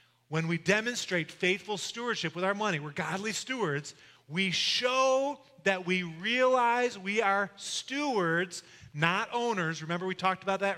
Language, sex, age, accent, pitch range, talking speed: English, male, 30-49, American, 140-195 Hz, 145 wpm